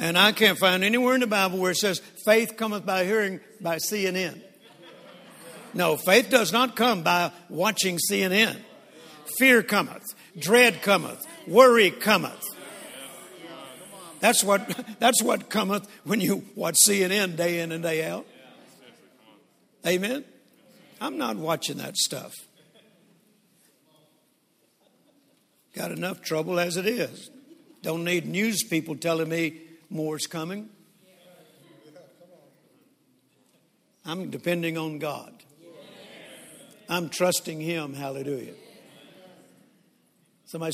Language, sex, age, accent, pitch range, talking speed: English, male, 60-79, American, 170-220 Hz, 110 wpm